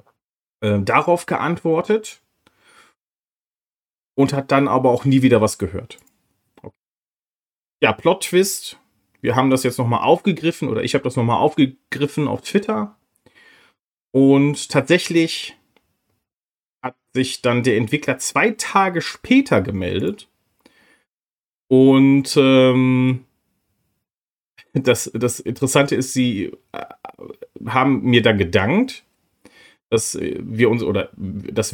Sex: male